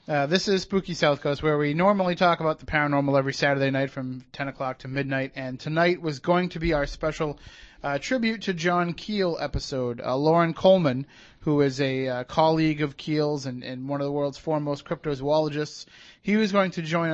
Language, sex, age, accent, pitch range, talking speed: English, male, 30-49, American, 135-160 Hz, 205 wpm